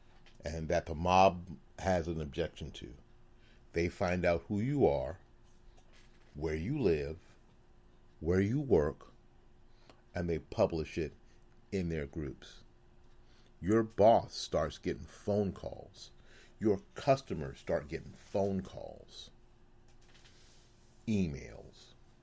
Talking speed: 110 wpm